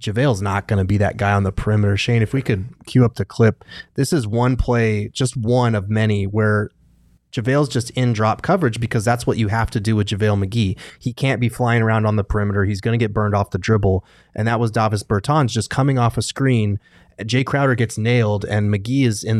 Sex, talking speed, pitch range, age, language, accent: male, 235 wpm, 105-120 Hz, 20-39, English, American